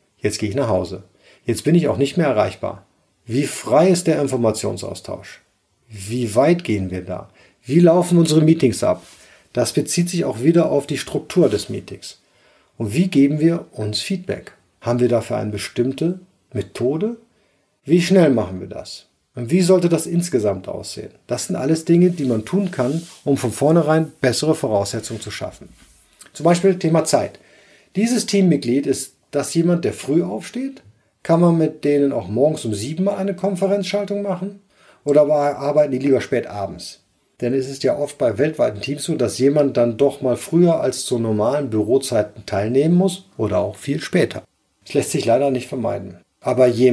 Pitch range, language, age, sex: 110-170 Hz, German, 50-69, male